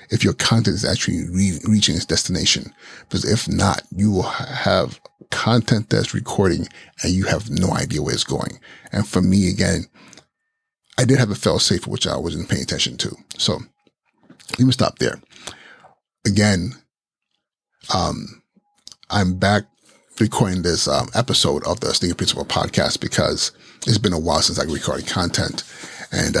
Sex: male